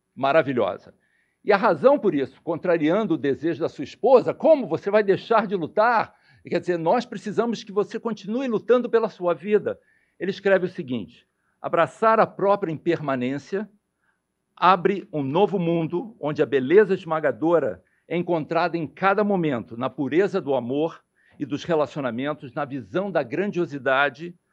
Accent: Brazilian